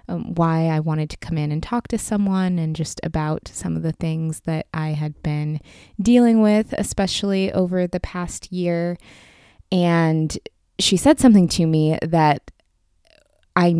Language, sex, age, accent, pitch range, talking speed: English, female, 20-39, American, 150-200 Hz, 160 wpm